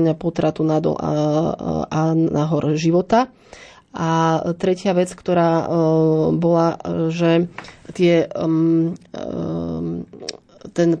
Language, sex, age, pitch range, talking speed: Slovak, female, 30-49, 160-175 Hz, 80 wpm